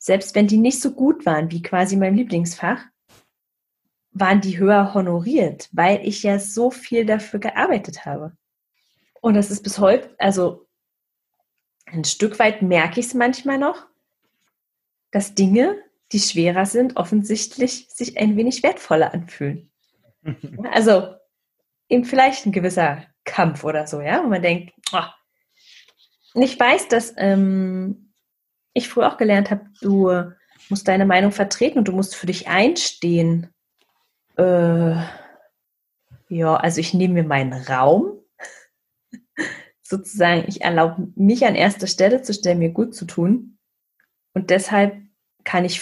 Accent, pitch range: German, 170-225 Hz